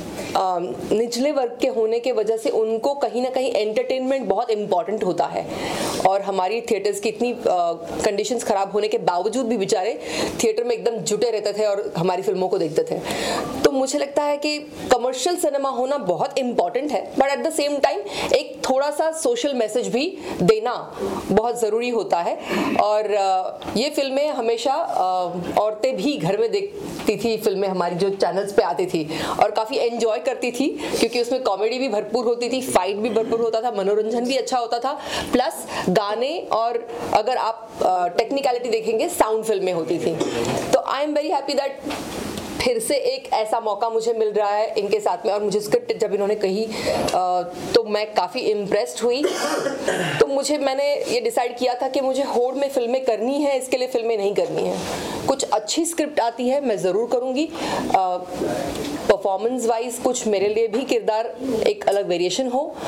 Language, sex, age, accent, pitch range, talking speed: Hindi, female, 30-49, native, 210-275 Hz, 180 wpm